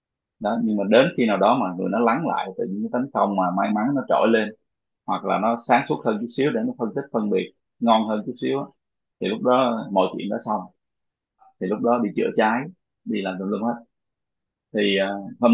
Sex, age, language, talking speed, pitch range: male, 20-39, Vietnamese, 230 wpm, 105-145 Hz